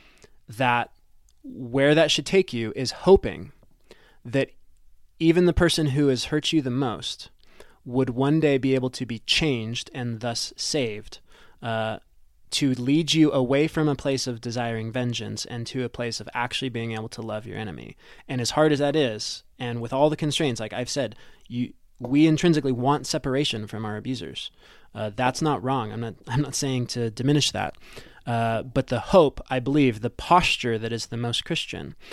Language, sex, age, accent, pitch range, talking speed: English, male, 20-39, American, 120-150 Hz, 185 wpm